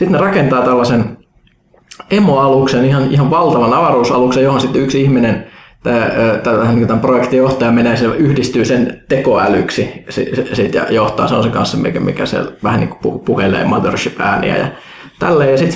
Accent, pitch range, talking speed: native, 120-140 Hz, 145 wpm